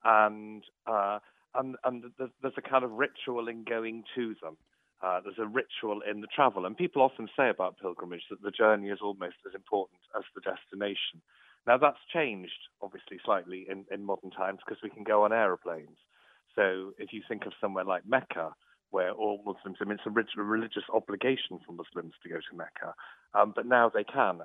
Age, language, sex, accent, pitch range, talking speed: 40-59, English, male, British, 100-130 Hz, 200 wpm